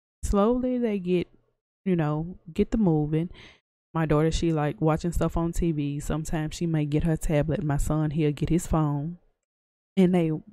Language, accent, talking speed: English, American, 170 wpm